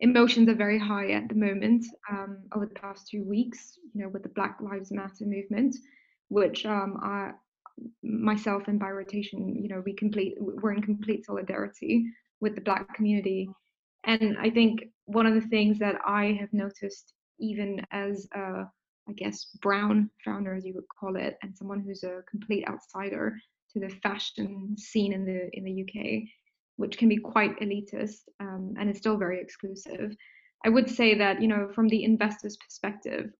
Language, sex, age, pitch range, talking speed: English, female, 20-39, 195-220 Hz, 180 wpm